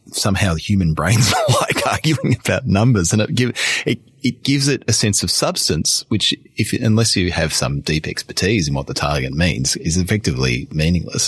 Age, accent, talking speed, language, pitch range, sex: 30-49, Australian, 185 wpm, English, 75-100 Hz, male